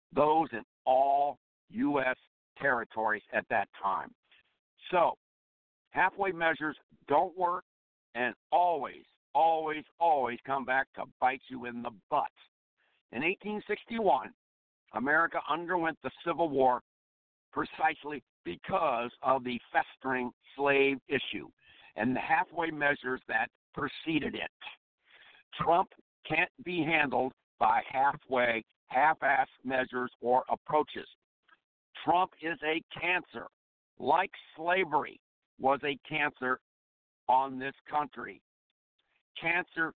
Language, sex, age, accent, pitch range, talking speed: English, male, 60-79, American, 125-160 Hz, 105 wpm